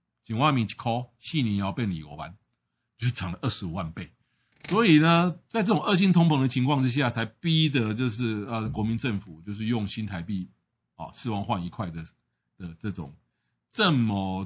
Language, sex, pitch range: Chinese, male, 100-155 Hz